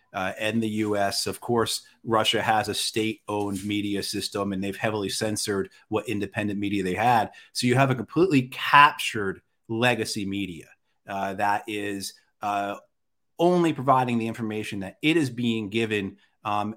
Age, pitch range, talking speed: 30-49, 100-130 Hz, 155 wpm